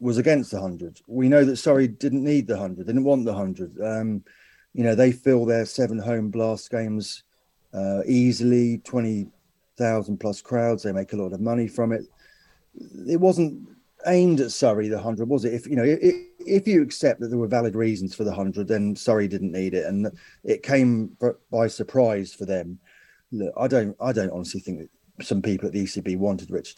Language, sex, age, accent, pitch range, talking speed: English, male, 30-49, British, 105-130 Hz, 205 wpm